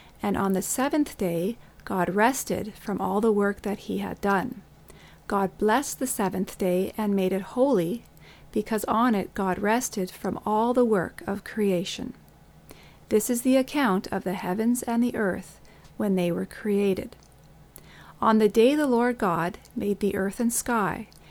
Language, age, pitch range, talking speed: English, 40-59, 195-235 Hz, 170 wpm